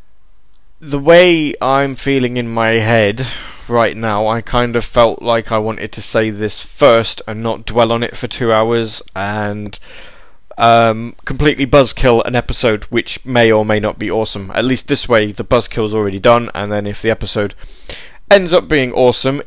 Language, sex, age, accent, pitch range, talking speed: English, male, 20-39, British, 105-130 Hz, 180 wpm